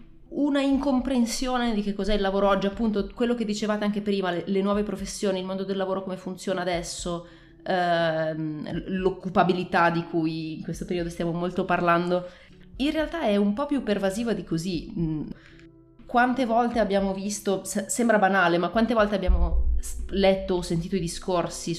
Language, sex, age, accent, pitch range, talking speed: Italian, female, 20-39, native, 170-215 Hz, 160 wpm